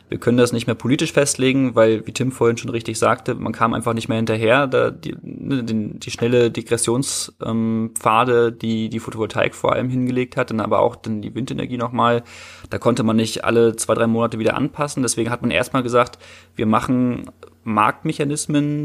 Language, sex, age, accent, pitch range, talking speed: German, male, 20-39, German, 115-130 Hz, 190 wpm